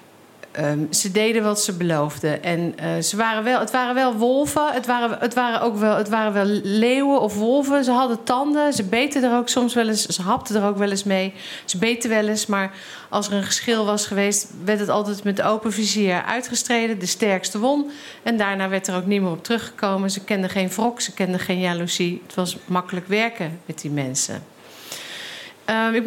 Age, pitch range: 50-69, 190-240 Hz